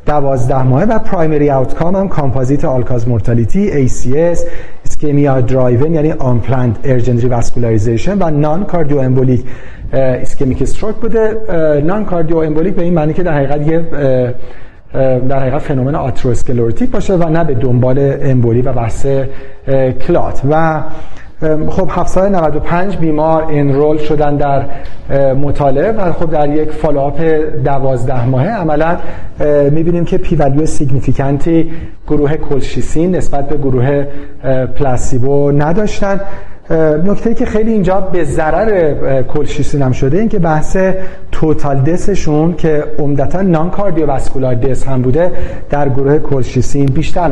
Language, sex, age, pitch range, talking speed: Persian, male, 40-59, 130-165 Hz, 125 wpm